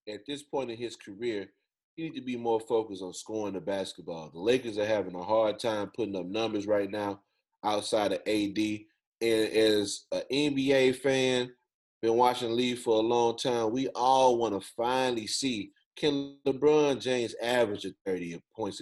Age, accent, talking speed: 30-49, American, 180 wpm